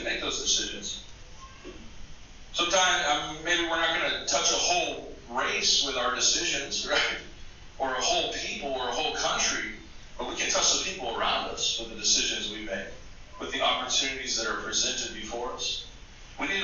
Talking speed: 180 wpm